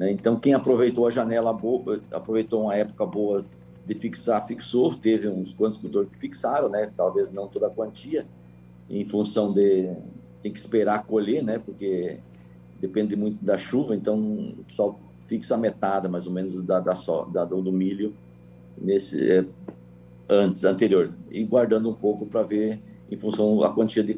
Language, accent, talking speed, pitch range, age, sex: Portuguese, Brazilian, 160 wpm, 90-115 Hz, 50-69, male